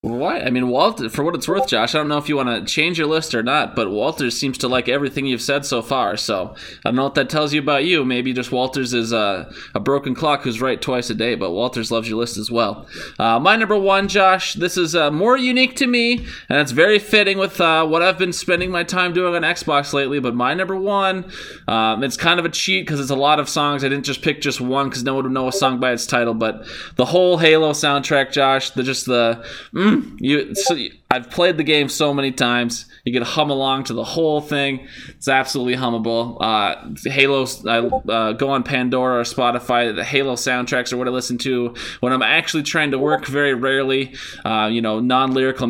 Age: 20-39